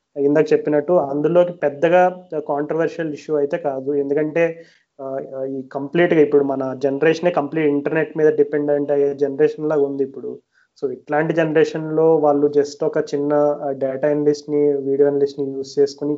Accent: native